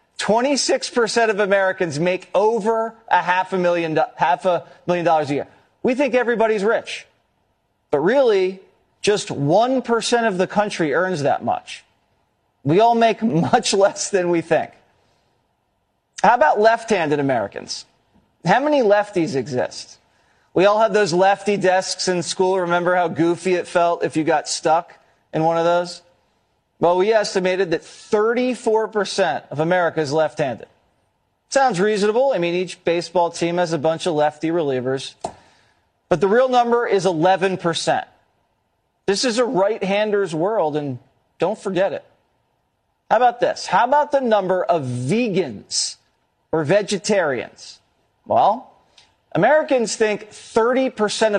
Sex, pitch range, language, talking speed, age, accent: male, 170-220 Hz, English, 140 wpm, 40-59, American